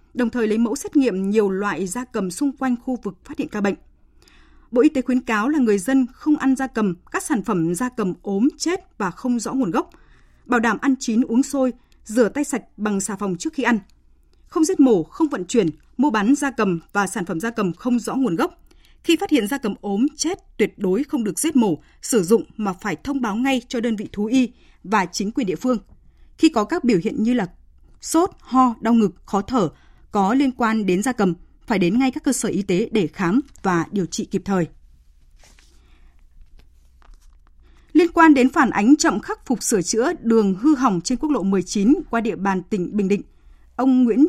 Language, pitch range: Vietnamese, 200-270 Hz